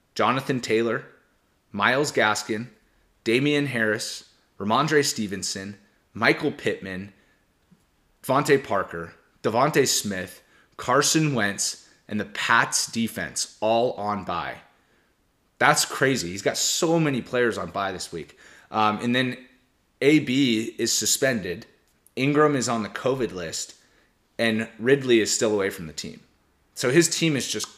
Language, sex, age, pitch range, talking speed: English, male, 30-49, 100-130 Hz, 125 wpm